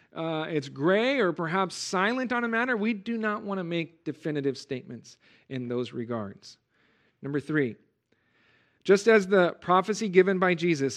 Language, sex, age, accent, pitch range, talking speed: English, male, 40-59, American, 145-205 Hz, 160 wpm